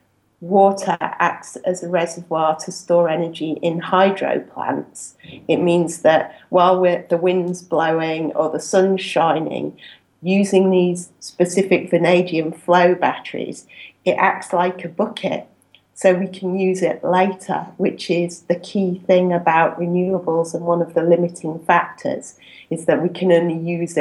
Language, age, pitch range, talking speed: English, 40-59, 170-185 Hz, 145 wpm